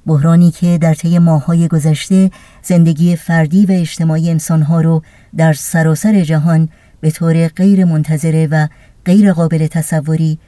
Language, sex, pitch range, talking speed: Persian, male, 160-175 Hz, 130 wpm